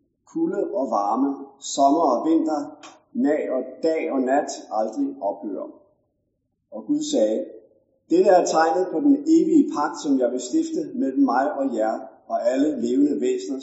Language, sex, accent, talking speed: Danish, male, native, 145 wpm